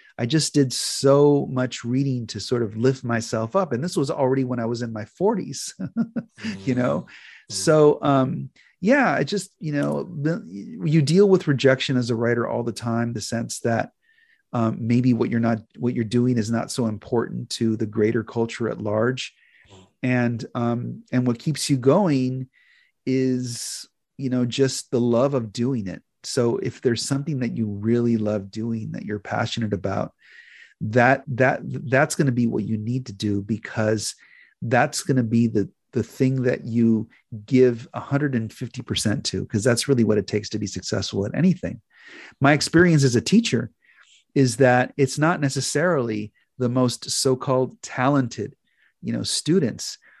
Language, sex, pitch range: English, male, 115-135 Hz